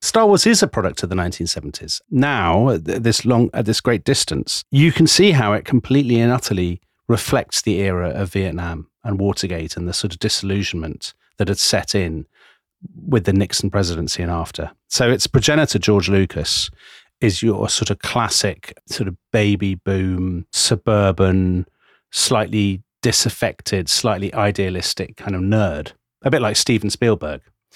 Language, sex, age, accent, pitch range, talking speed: English, male, 40-59, British, 95-115 Hz, 150 wpm